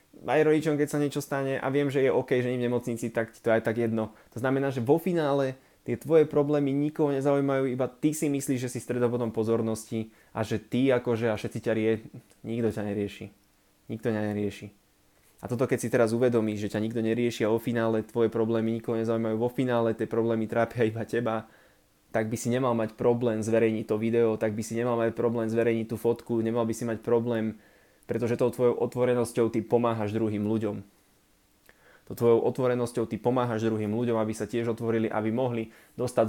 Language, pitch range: Slovak, 110-120 Hz